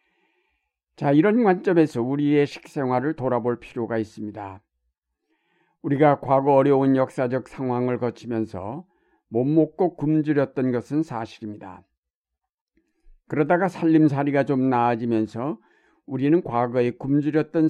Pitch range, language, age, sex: 125-150 Hz, Korean, 60-79, male